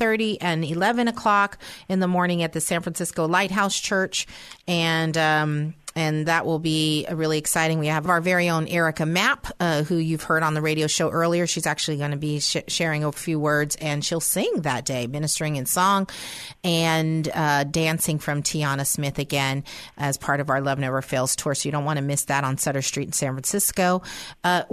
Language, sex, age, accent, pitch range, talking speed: English, female, 40-59, American, 155-205 Hz, 200 wpm